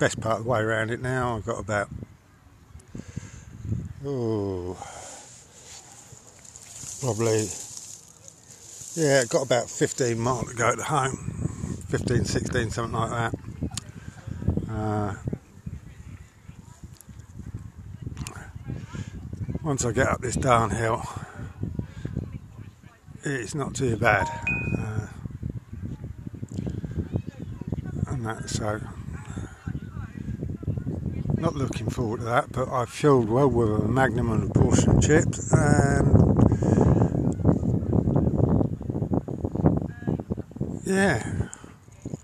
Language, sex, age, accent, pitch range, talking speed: English, male, 50-69, British, 105-130 Hz, 85 wpm